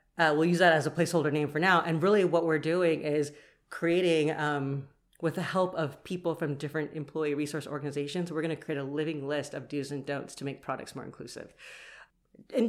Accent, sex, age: American, female, 40-59